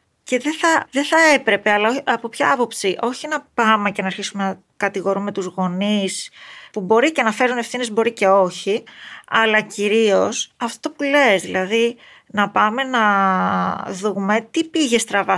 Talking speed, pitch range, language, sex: 170 wpm, 195-250 Hz, Greek, female